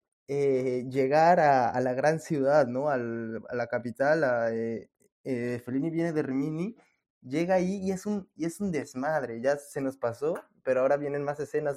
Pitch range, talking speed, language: 125-155 Hz, 190 wpm, Spanish